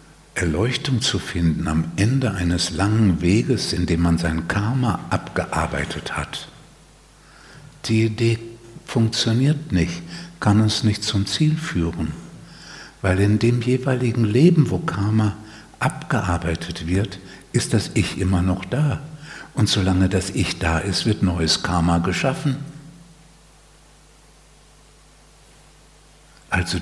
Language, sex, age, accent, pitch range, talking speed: German, male, 60-79, German, 90-135 Hz, 115 wpm